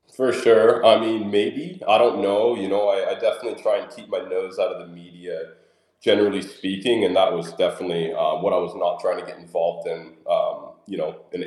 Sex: male